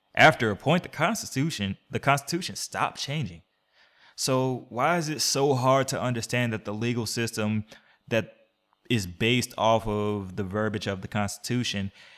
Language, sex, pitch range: English, male, 100-115 Hz